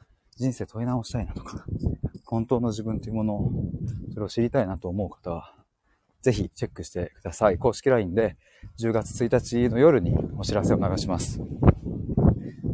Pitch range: 105-140 Hz